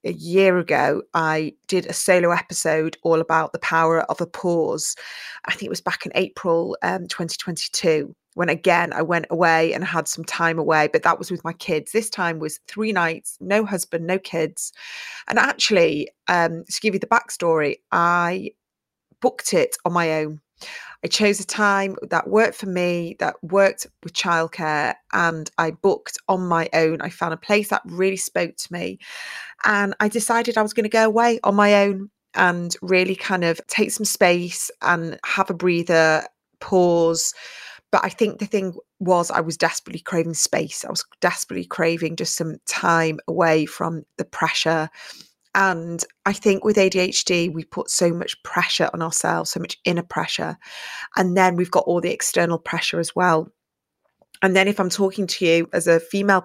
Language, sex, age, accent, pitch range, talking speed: English, female, 30-49, British, 165-195 Hz, 185 wpm